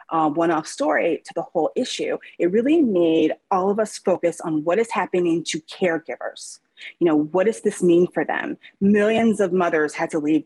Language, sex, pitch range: English, female, 165-230 Hz